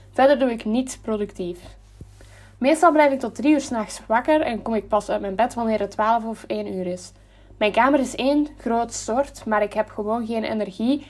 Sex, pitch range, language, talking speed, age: female, 210-270 Hz, Dutch, 210 wpm, 10-29